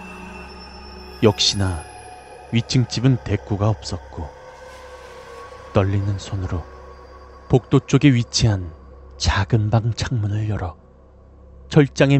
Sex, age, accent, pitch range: male, 30-49, native, 70-115 Hz